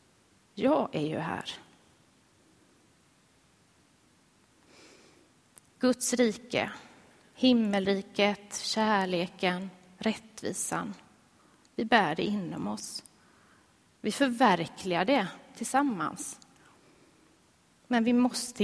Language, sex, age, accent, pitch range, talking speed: Swedish, female, 30-49, native, 190-245 Hz, 70 wpm